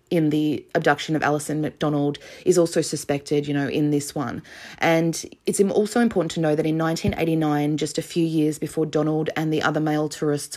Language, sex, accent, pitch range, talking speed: English, female, Australian, 150-165 Hz, 195 wpm